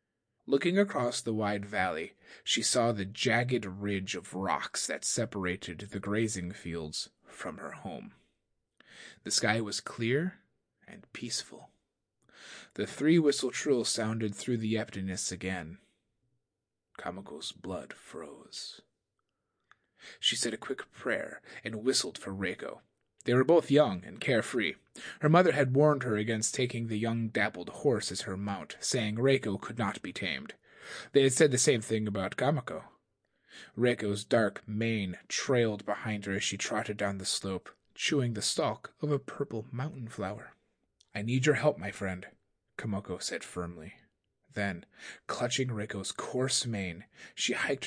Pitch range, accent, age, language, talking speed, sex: 100-125 Hz, American, 30-49, English, 145 wpm, male